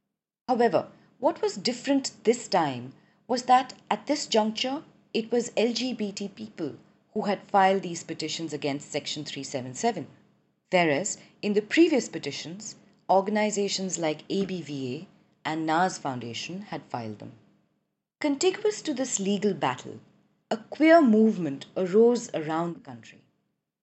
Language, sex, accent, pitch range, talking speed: English, female, Indian, 155-215 Hz, 125 wpm